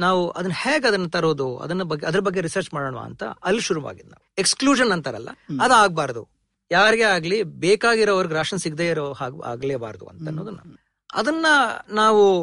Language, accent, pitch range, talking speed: Kannada, native, 155-205 Hz, 110 wpm